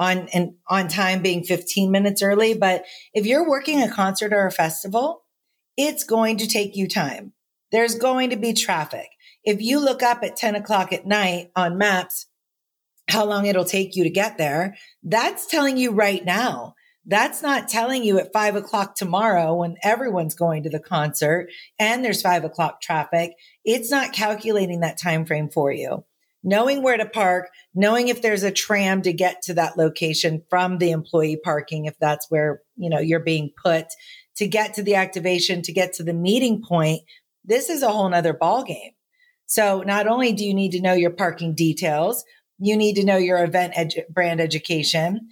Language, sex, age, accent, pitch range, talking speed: English, female, 40-59, American, 175-215 Hz, 190 wpm